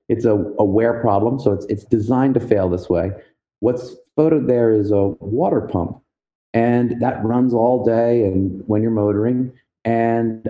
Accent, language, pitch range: American, English, 110-130 Hz